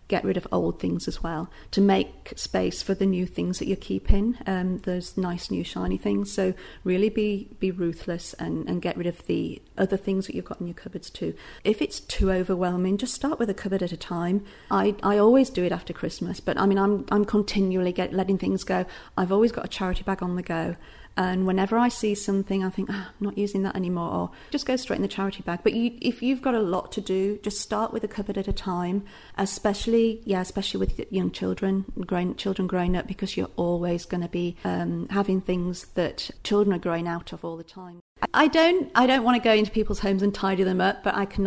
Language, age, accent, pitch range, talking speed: English, 40-59, British, 175-205 Hz, 235 wpm